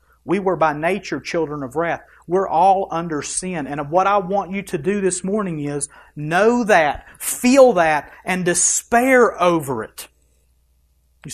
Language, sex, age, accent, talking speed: English, male, 40-59, American, 160 wpm